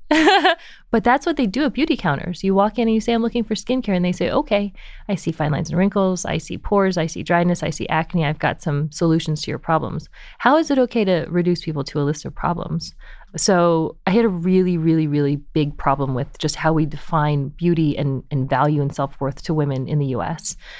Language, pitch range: English, 150-180 Hz